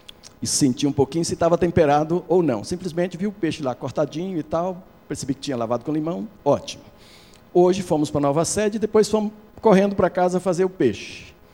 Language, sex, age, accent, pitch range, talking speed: Portuguese, male, 60-79, Brazilian, 145-205 Hz, 205 wpm